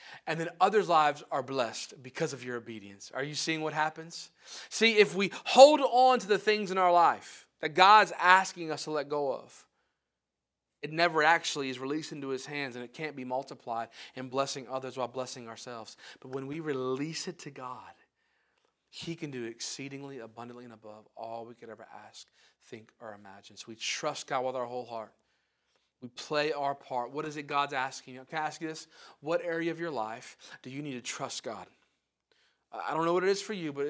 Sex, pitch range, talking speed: male, 130-170 Hz, 210 wpm